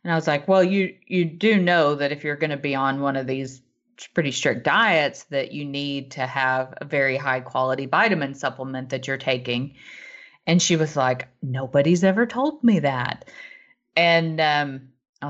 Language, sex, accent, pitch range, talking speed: English, female, American, 140-195 Hz, 185 wpm